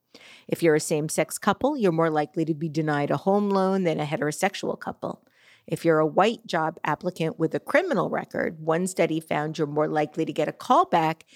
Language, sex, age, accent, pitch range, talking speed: English, female, 50-69, American, 160-210 Hz, 200 wpm